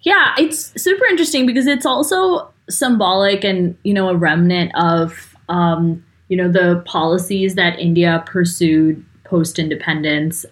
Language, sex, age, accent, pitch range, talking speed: English, female, 20-39, American, 170-210 Hz, 135 wpm